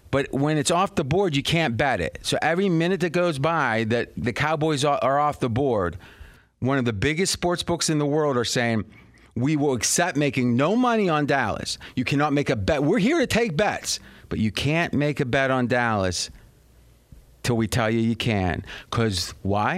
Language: English